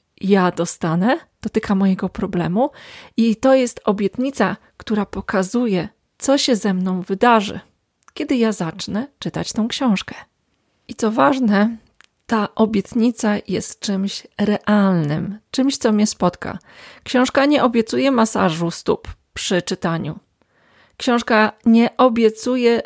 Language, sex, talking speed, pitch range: Polish, female, 115 wpm, 195-250 Hz